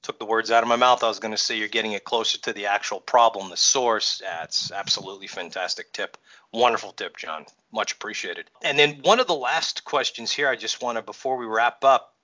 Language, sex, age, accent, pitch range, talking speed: English, male, 30-49, American, 105-125 Hz, 230 wpm